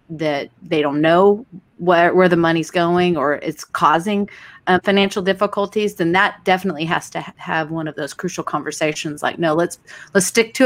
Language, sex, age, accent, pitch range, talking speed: English, female, 30-49, American, 160-195 Hz, 180 wpm